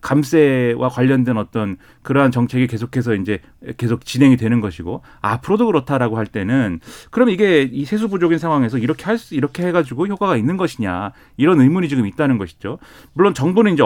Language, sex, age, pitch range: Korean, male, 30-49, 115-165 Hz